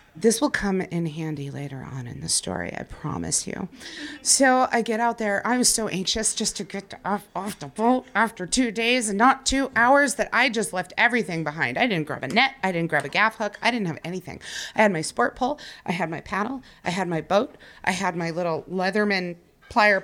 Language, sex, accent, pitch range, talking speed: English, female, American, 185-255 Hz, 230 wpm